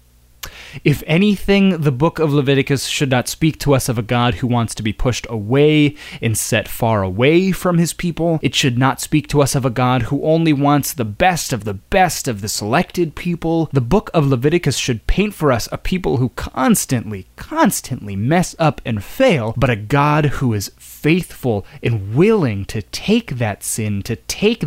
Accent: American